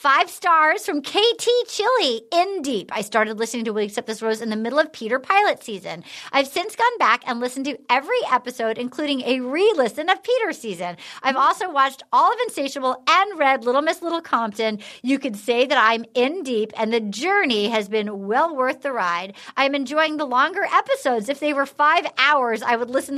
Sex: female